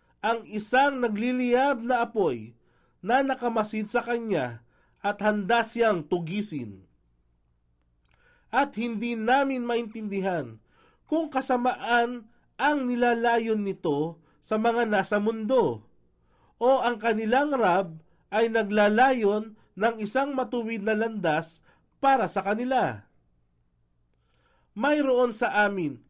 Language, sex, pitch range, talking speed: English, male, 170-240 Hz, 100 wpm